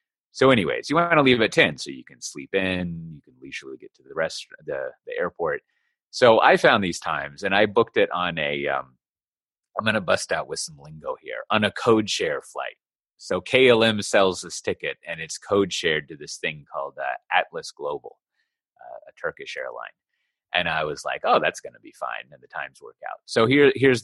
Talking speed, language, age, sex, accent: 215 wpm, English, 30-49, male, American